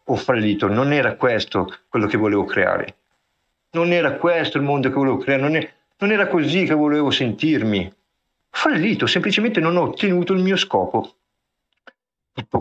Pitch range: 115-165 Hz